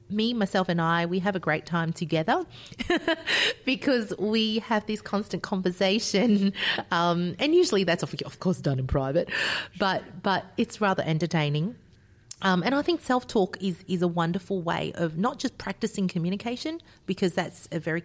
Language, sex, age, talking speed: English, female, 30-49, 165 wpm